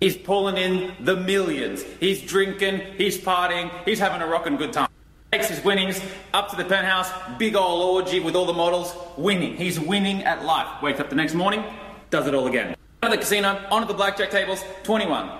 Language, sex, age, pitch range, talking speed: English, male, 20-39, 180-225 Hz, 200 wpm